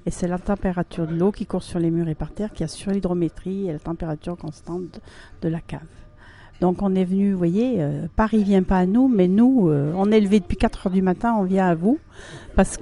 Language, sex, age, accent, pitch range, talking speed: French, female, 50-69, French, 175-215 Hz, 245 wpm